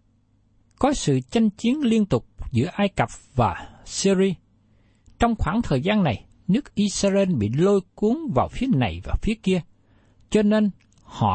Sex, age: male, 60-79